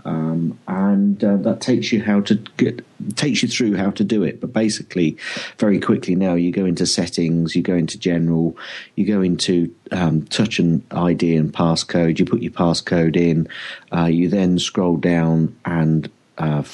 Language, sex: English, male